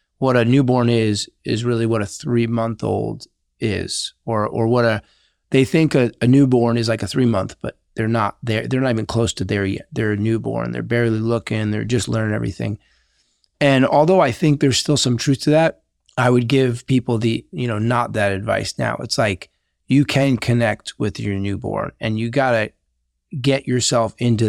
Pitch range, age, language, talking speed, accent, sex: 110-130 Hz, 30-49, English, 205 wpm, American, male